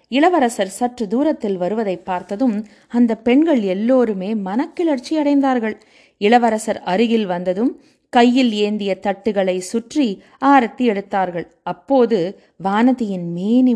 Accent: native